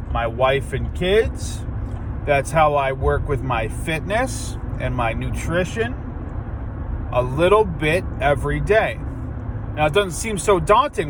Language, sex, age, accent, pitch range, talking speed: English, male, 30-49, American, 110-180 Hz, 135 wpm